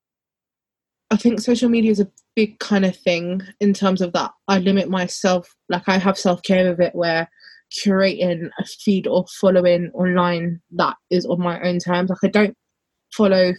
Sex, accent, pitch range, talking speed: female, British, 165-195 Hz, 175 wpm